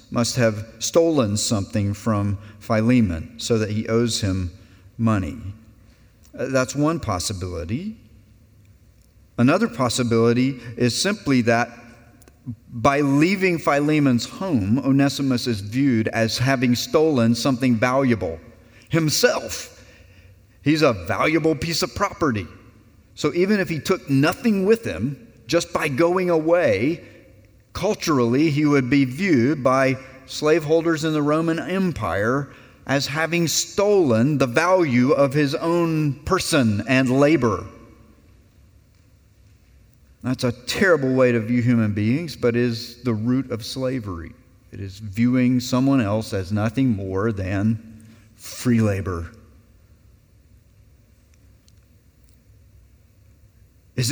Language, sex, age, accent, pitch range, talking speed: English, male, 40-59, American, 105-140 Hz, 110 wpm